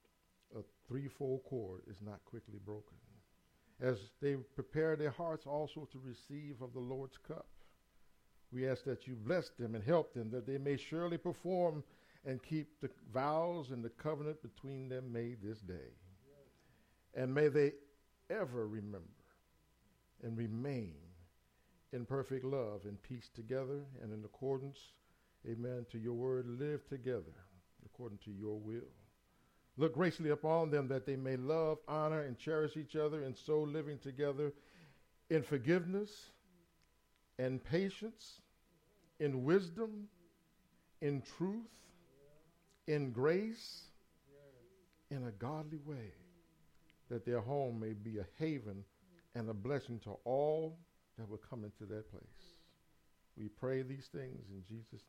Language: English